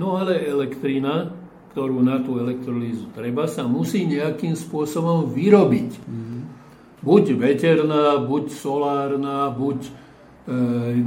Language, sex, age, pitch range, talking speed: Slovak, male, 60-79, 135-170 Hz, 105 wpm